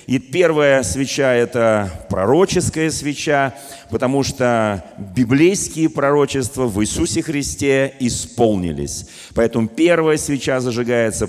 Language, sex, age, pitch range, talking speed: Russian, male, 40-59, 115-155 Hz, 95 wpm